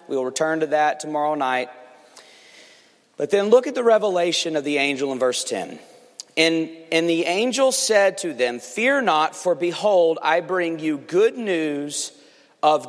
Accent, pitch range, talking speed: American, 170-275 Hz, 170 wpm